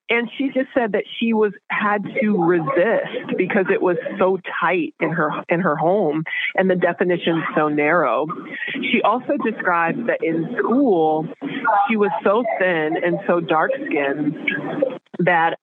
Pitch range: 155-190 Hz